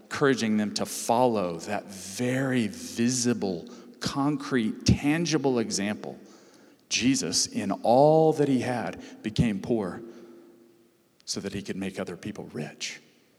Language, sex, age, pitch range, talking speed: English, male, 40-59, 100-140 Hz, 115 wpm